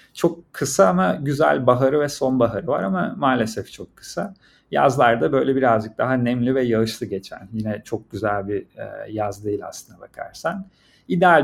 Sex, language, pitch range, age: male, Turkish, 110-140 Hz, 40-59